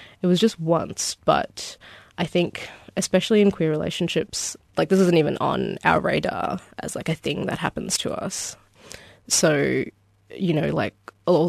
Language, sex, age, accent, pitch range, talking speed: English, female, 20-39, Australian, 135-180 Hz, 160 wpm